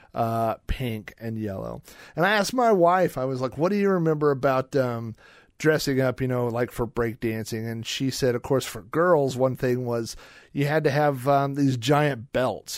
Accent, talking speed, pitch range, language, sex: American, 205 wpm, 115-150 Hz, English, male